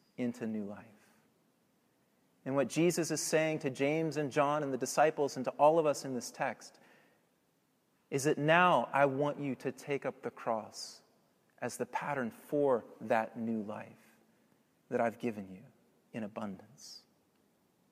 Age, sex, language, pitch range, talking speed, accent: 30-49, male, English, 125-150 Hz, 155 wpm, American